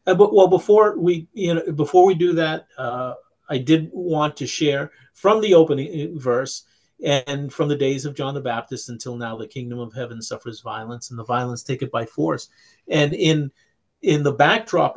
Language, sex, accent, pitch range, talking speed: English, male, American, 130-180 Hz, 195 wpm